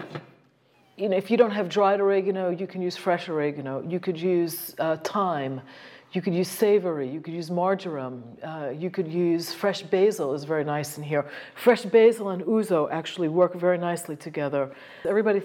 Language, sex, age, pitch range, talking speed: English, female, 50-69, 160-205 Hz, 185 wpm